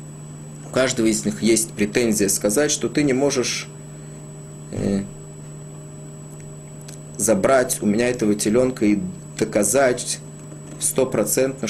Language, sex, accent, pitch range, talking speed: Russian, male, native, 75-125 Hz, 90 wpm